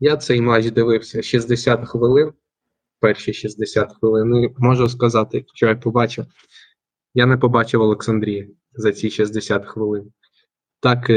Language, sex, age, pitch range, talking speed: Ukrainian, male, 20-39, 110-130 Hz, 130 wpm